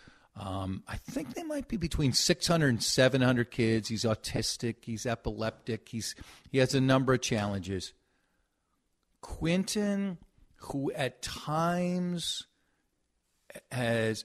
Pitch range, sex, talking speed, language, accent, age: 115-185 Hz, male, 115 wpm, English, American, 50-69